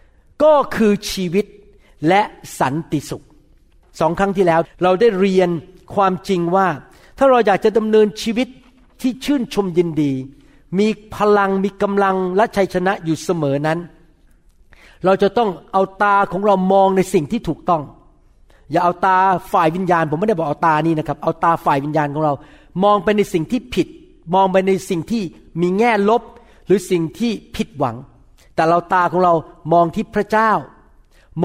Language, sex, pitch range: Thai, male, 165-220 Hz